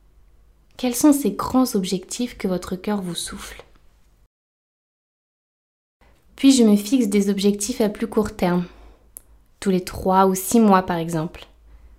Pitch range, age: 195-240 Hz, 20-39